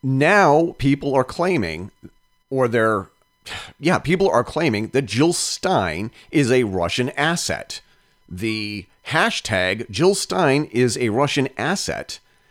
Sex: male